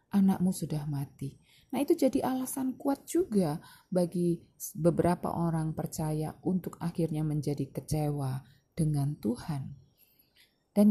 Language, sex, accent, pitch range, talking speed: Indonesian, female, native, 155-225 Hz, 110 wpm